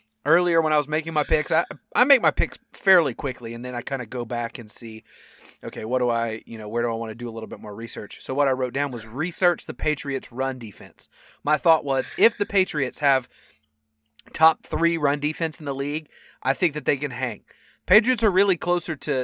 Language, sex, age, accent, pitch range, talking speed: English, male, 30-49, American, 120-170 Hz, 235 wpm